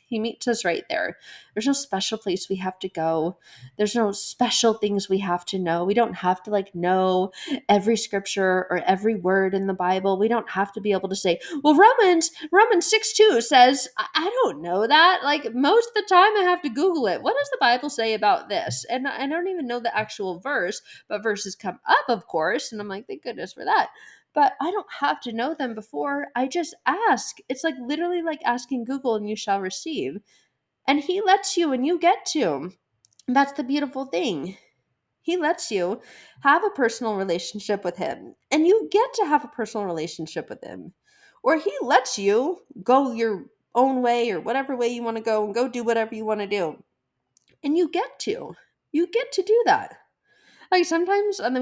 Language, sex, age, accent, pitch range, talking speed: English, female, 20-39, American, 205-315 Hz, 205 wpm